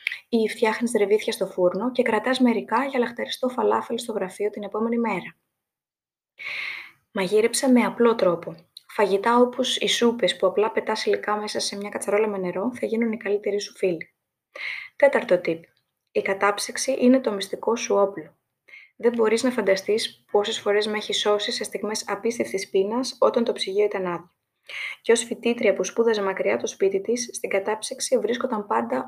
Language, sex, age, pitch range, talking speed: Greek, female, 20-39, 195-245 Hz, 165 wpm